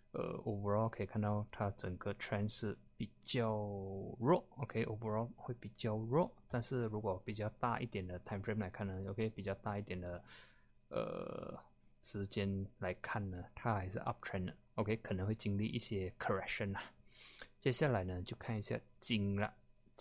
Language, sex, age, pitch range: Chinese, male, 20-39, 100-130 Hz